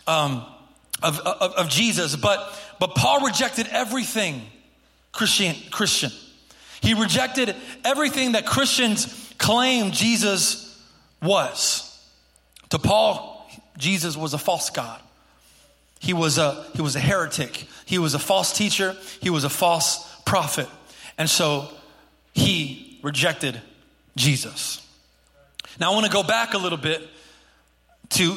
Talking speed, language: 125 wpm, English